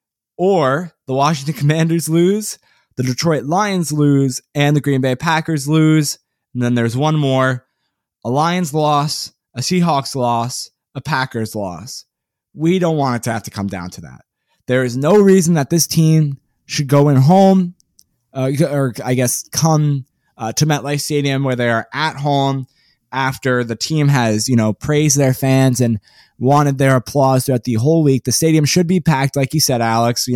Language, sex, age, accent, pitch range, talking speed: English, male, 20-39, American, 125-155 Hz, 180 wpm